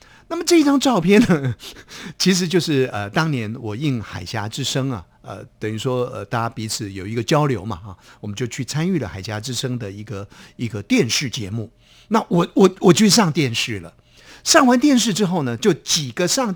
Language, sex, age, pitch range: Chinese, male, 50-69, 115-180 Hz